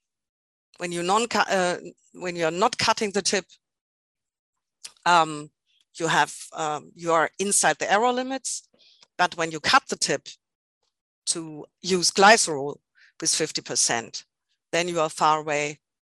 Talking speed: 125 wpm